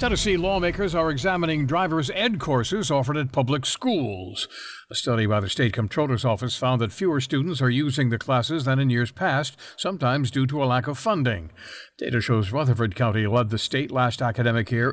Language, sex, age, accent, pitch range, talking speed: English, male, 60-79, American, 115-150 Hz, 190 wpm